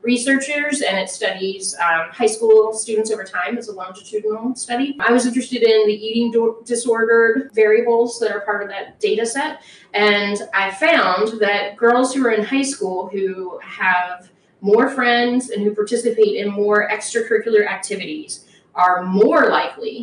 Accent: American